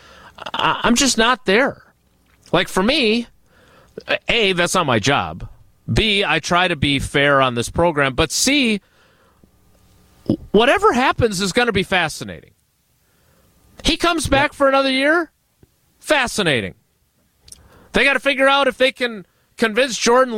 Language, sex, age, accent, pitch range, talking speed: English, male, 30-49, American, 160-255 Hz, 140 wpm